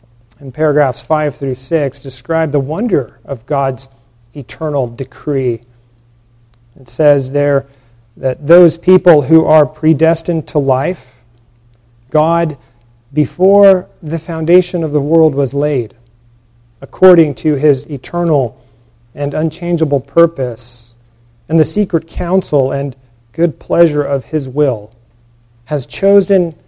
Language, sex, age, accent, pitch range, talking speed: English, male, 40-59, American, 120-160 Hz, 115 wpm